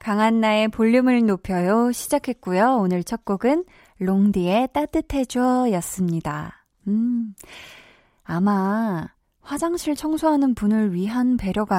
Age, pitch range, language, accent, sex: 20-39, 180-255 Hz, Korean, native, female